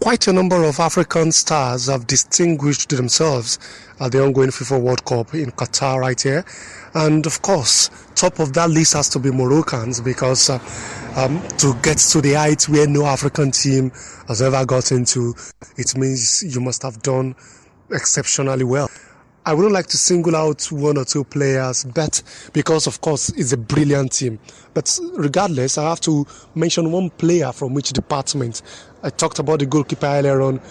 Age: 30-49